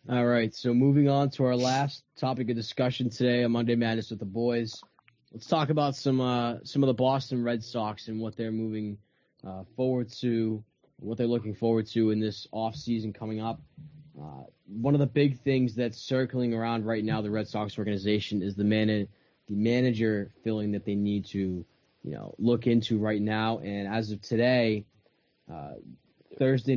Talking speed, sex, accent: 190 wpm, male, American